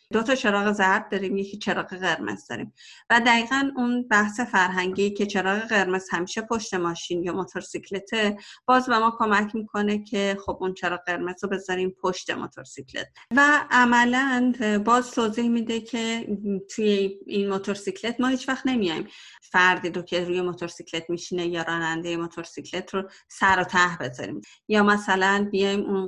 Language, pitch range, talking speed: Persian, 175-220 Hz, 150 wpm